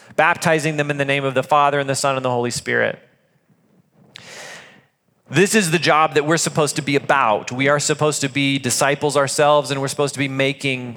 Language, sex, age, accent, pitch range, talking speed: English, male, 30-49, American, 140-175 Hz, 210 wpm